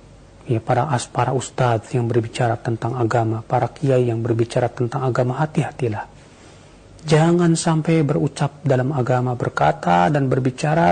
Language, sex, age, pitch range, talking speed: Indonesian, male, 40-59, 120-145 Hz, 125 wpm